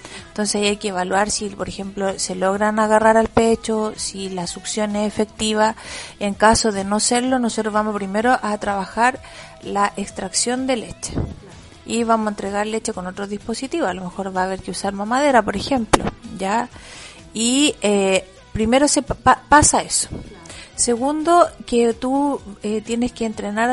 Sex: female